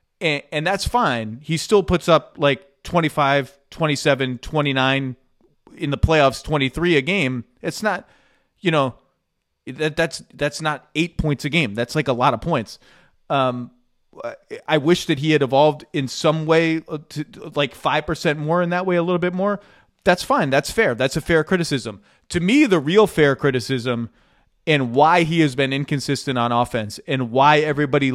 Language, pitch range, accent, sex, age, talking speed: English, 130-160 Hz, American, male, 30-49, 185 wpm